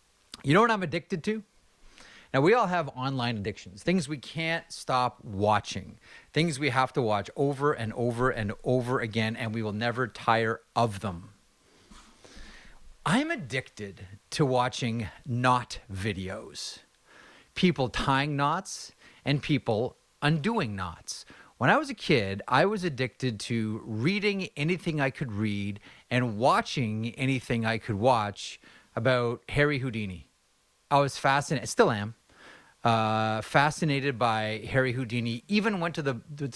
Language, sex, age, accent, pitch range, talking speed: English, male, 30-49, American, 110-140 Hz, 140 wpm